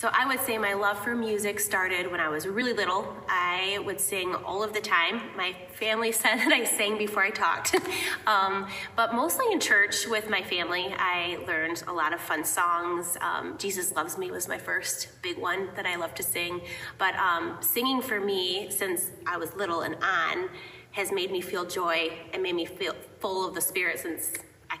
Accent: American